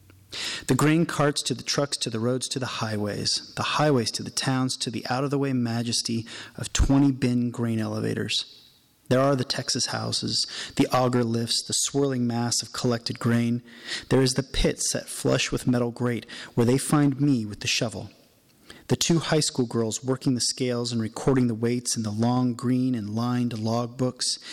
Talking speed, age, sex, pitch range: 185 wpm, 30-49, male, 115-130 Hz